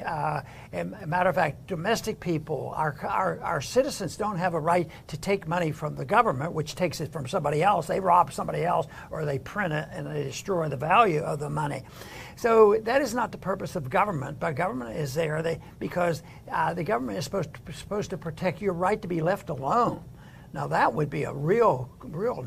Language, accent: English, American